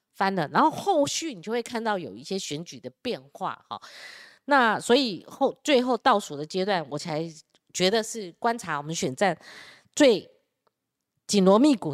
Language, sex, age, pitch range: Chinese, female, 20-39, 170-235 Hz